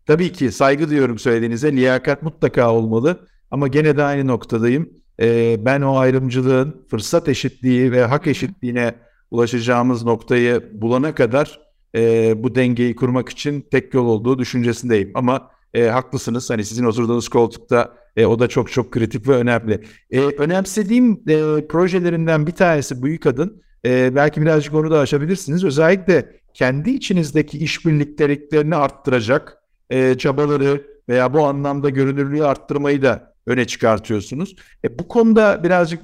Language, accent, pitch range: Turkish, native, 125-155 Hz